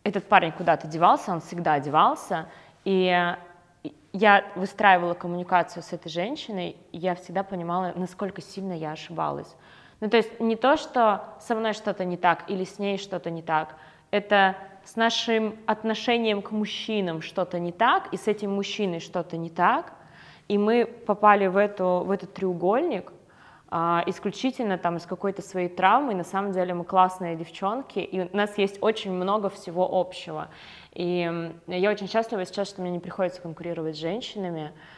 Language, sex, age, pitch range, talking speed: Russian, female, 20-39, 175-205 Hz, 165 wpm